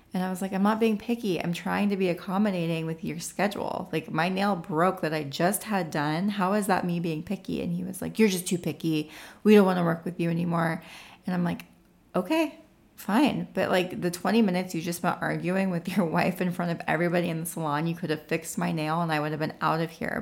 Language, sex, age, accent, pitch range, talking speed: English, female, 30-49, American, 160-200 Hz, 250 wpm